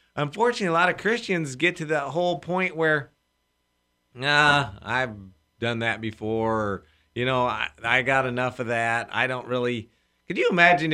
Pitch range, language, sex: 105-155 Hz, English, male